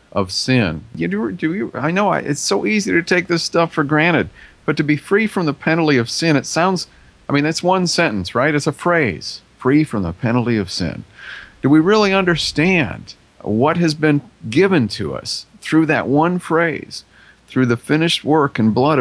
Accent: American